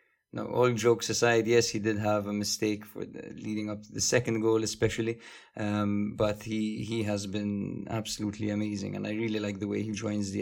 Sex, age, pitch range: male, 20-39, 105-115 Hz